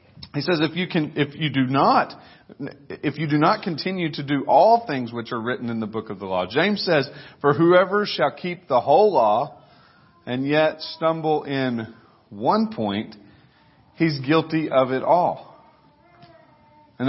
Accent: American